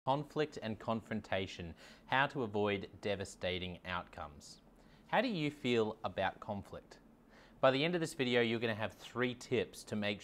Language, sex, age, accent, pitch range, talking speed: English, male, 20-39, Australian, 95-120 Hz, 160 wpm